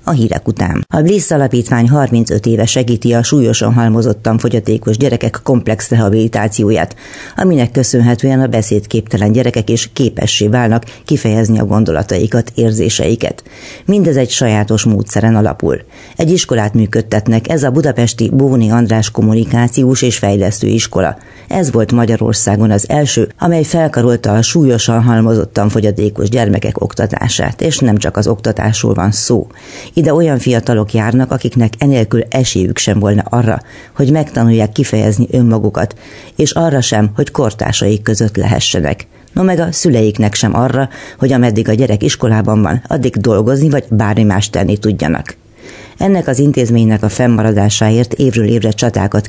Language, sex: Hungarian, female